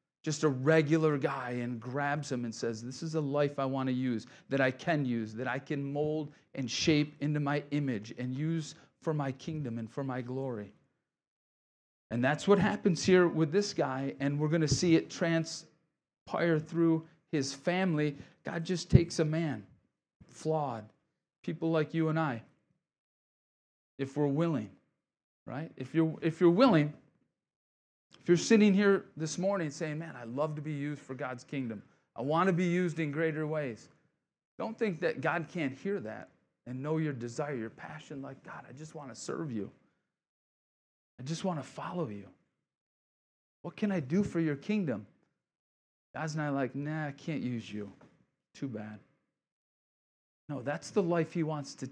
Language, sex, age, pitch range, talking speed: English, male, 40-59, 135-165 Hz, 175 wpm